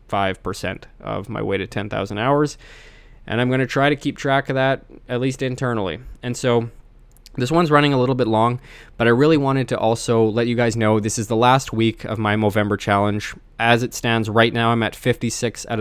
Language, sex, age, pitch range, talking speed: English, male, 20-39, 105-120 Hz, 215 wpm